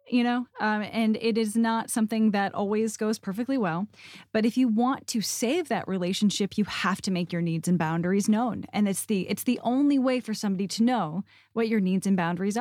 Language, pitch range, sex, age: English, 185-240 Hz, female, 10-29